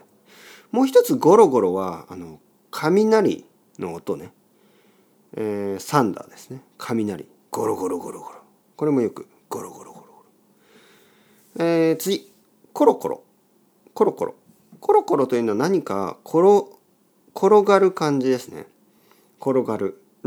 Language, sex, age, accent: Japanese, male, 40-59, native